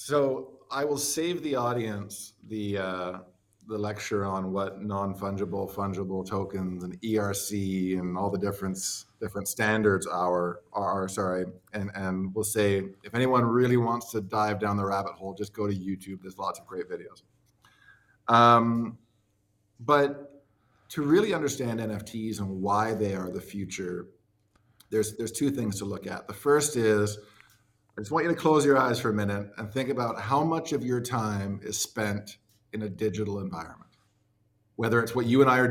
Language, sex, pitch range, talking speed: English, male, 100-120 Hz, 175 wpm